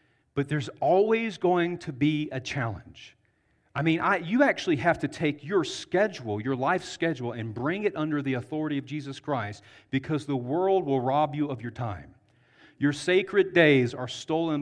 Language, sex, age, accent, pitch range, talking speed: English, male, 40-59, American, 130-170 Hz, 175 wpm